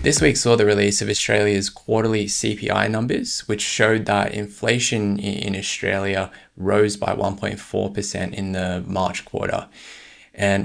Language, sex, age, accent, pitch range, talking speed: English, male, 20-39, Australian, 95-105 Hz, 135 wpm